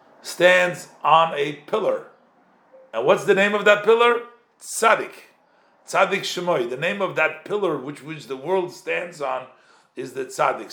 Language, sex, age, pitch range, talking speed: English, male, 50-69, 145-210 Hz, 155 wpm